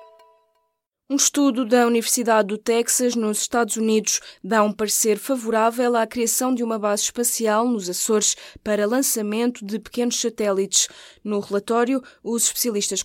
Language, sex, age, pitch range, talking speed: Portuguese, female, 20-39, 200-235 Hz, 140 wpm